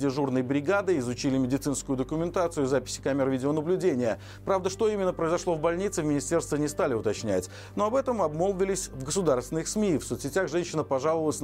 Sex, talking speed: male, 155 wpm